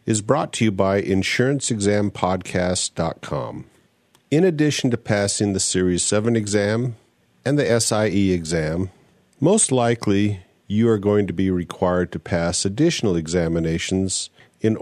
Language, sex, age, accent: English, male, 50-69, American